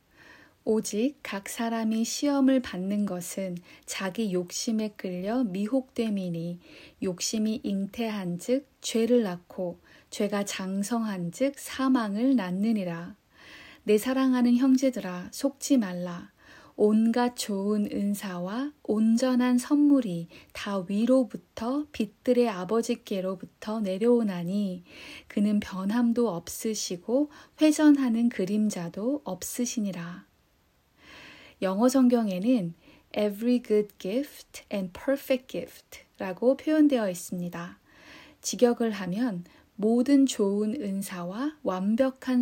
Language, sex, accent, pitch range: Korean, female, native, 190-255 Hz